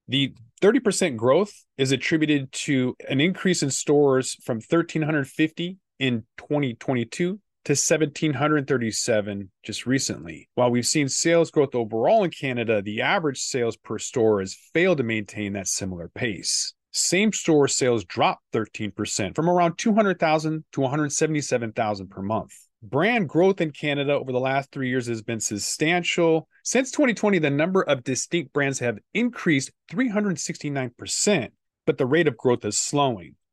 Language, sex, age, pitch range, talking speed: English, male, 30-49, 115-155 Hz, 140 wpm